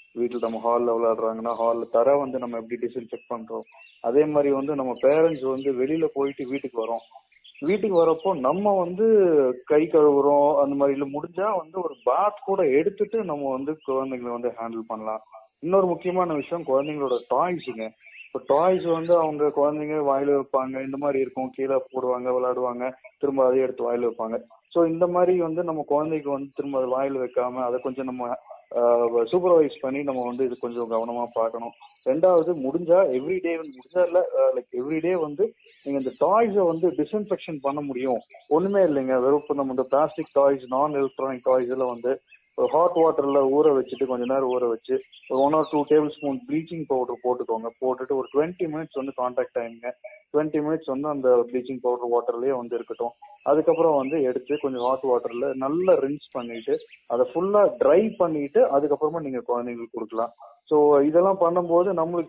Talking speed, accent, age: 160 wpm, native, 30-49